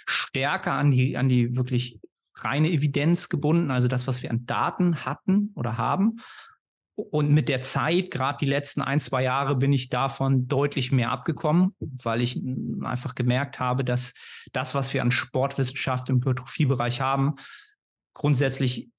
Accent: German